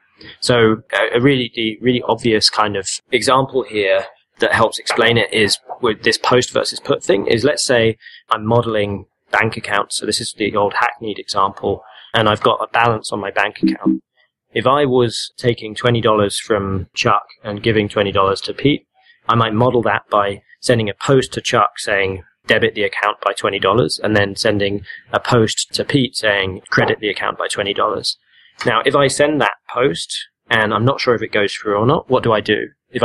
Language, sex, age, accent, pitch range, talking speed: English, male, 20-39, British, 105-125 Hz, 190 wpm